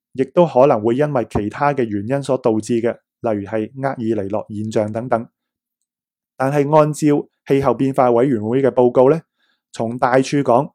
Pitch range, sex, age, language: 115-140 Hz, male, 20-39, Chinese